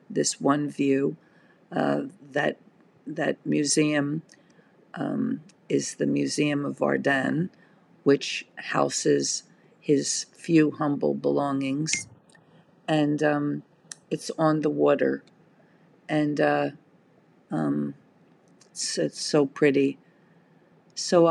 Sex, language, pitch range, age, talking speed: female, English, 140-160 Hz, 50-69, 95 wpm